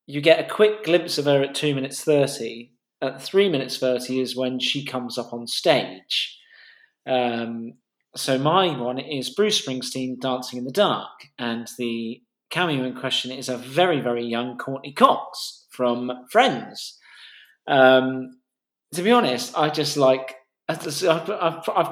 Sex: male